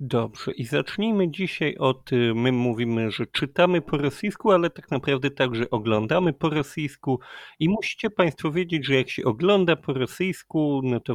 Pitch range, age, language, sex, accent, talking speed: 120-155 Hz, 40-59, Polish, male, native, 160 wpm